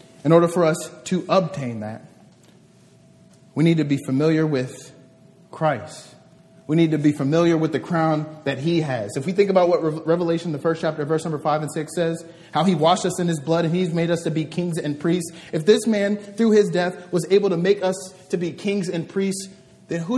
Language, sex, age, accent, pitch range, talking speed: English, male, 30-49, American, 160-190 Hz, 220 wpm